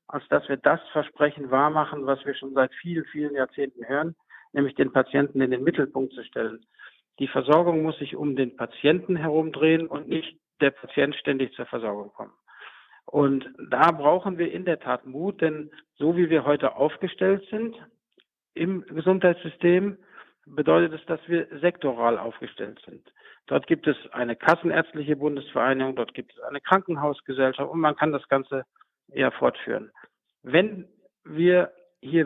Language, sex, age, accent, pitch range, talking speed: German, male, 50-69, German, 135-170 Hz, 155 wpm